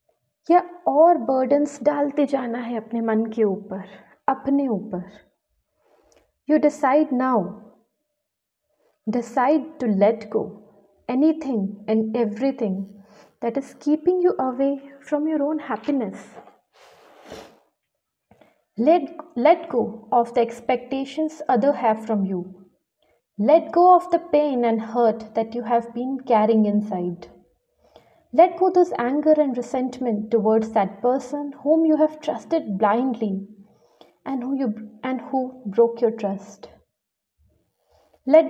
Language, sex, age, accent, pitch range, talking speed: Hindi, female, 30-49, native, 220-290 Hz, 120 wpm